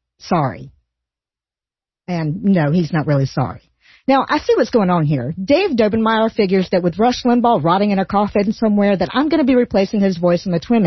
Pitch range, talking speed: 170-250 Hz, 205 wpm